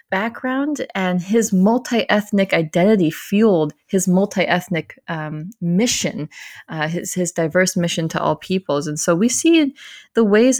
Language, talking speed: English, 130 wpm